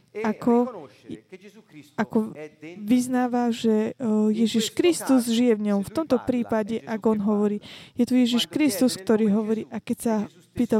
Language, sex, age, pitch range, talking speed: Slovak, female, 20-39, 220-260 Hz, 140 wpm